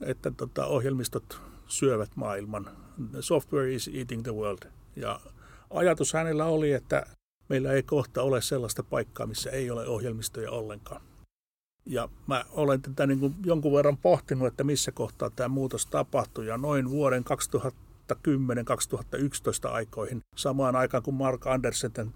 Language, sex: English, male